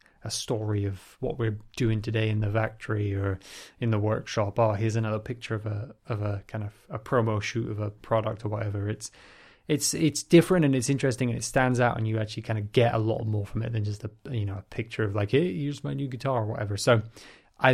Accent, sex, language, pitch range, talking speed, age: British, male, English, 105-125 Hz, 245 wpm, 20-39